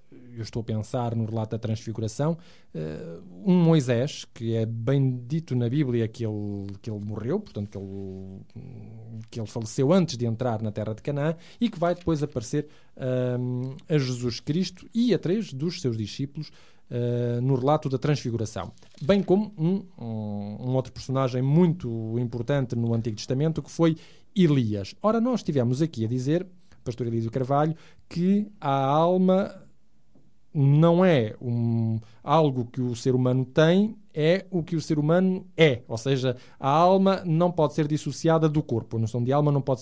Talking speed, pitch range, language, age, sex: 170 wpm, 115-160 Hz, Portuguese, 20-39, male